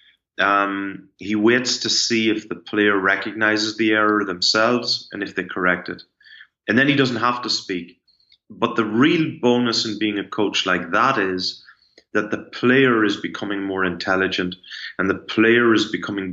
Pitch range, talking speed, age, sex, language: 95-110 Hz, 175 wpm, 30-49, male, English